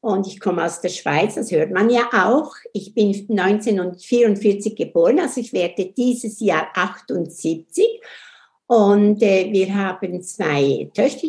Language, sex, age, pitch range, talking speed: German, female, 60-79, 200-265 Hz, 145 wpm